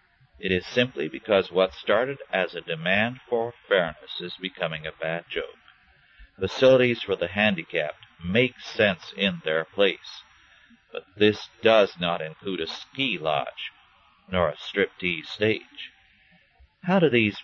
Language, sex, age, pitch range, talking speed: English, male, 50-69, 100-130 Hz, 140 wpm